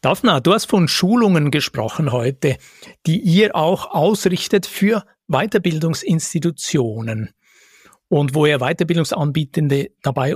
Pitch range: 135-180 Hz